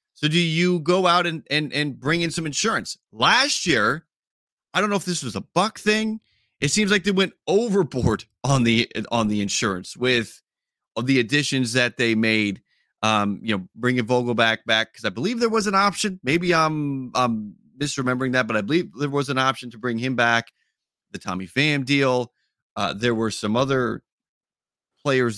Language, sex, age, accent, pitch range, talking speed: English, male, 30-49, American, 115-170 Hz, 190 wpm